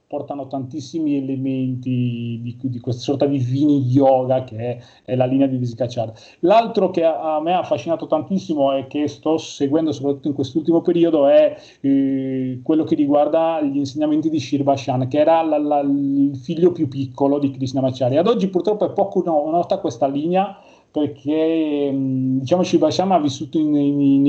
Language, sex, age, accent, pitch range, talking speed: Italian, male, 30-49, native, 135-165 Hz, 170 wpm